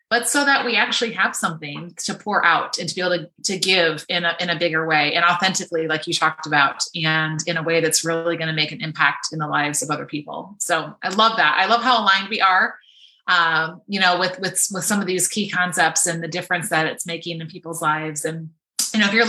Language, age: English, 30-49